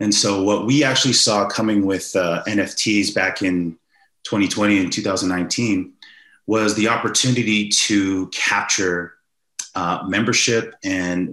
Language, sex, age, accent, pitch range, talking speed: English, male, 30-49, American, 95-115 Hz, 120 wpm